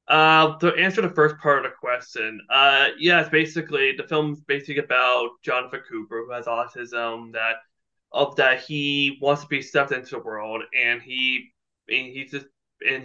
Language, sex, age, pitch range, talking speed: English, male, 20-39, 120-150 Hz, 175 wpm